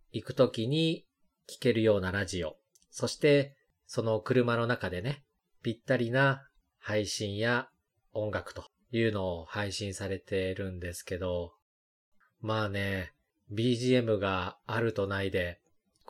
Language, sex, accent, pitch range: Japanese, male, native, 95-125 Hz